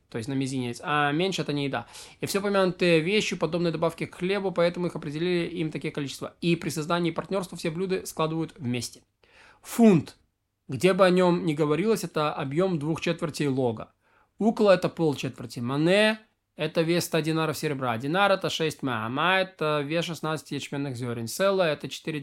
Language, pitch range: Russian, 140-180 Hz